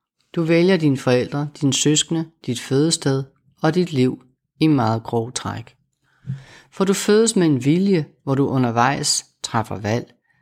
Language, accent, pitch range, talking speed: Danish, native, 125-155 Hz, 150 wpm